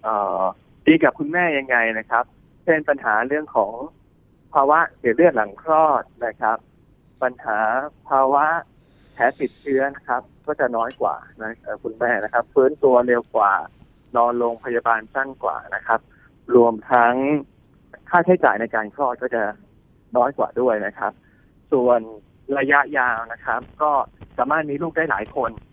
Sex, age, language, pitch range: male, 20-39, Thai, 110-140 Hz